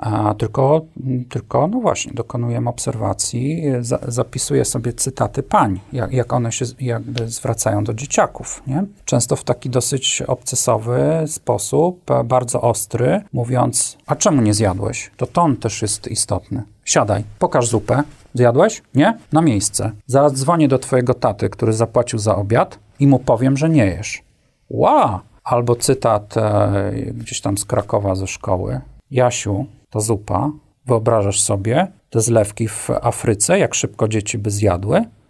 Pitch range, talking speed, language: 105-135 Hz, 145 wpm, Polish